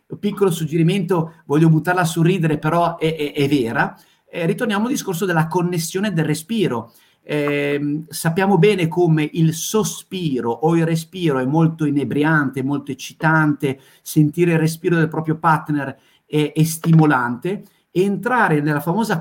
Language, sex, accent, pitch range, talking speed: Italian, male, native, 145-170 Hz, 140 wpm